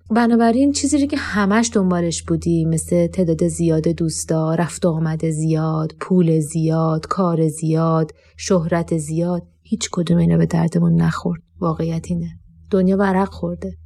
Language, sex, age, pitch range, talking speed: Persian, female, 30-49, 165-205 Hz, 140 wpm